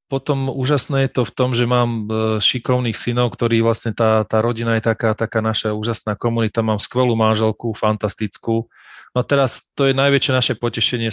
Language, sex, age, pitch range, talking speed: Slovak, male, 30-49, 110-120 Hz, 175 wpm